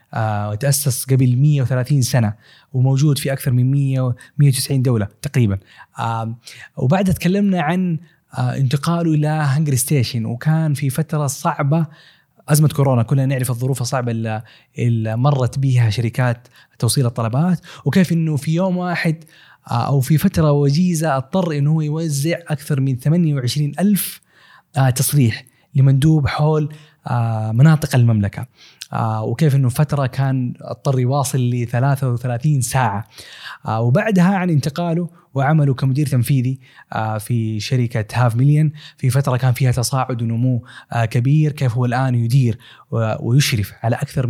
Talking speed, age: 120 wpm, 20-39